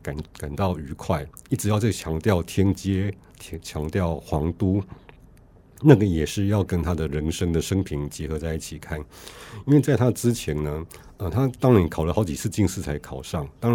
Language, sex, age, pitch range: Chinese, male, 50-69, 80-105 Hz